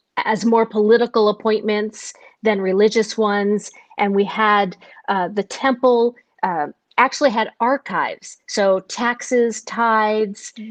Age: 50-69